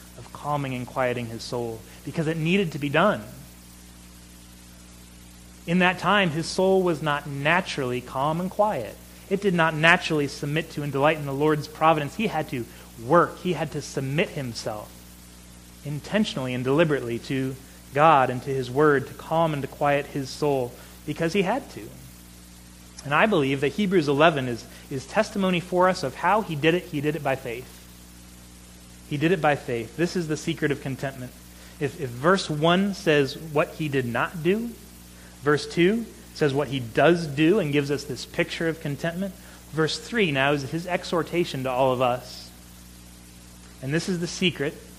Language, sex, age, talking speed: English, male, 30-49, 180 wpm